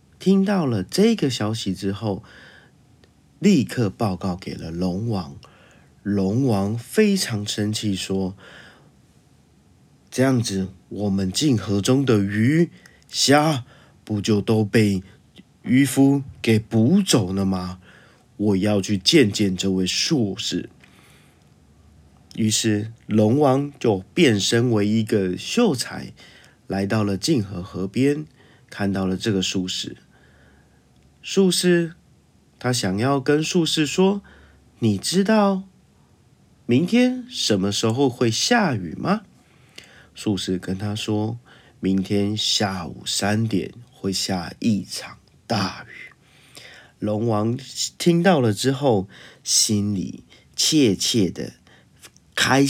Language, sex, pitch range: Chinese, male, 95-130 Hz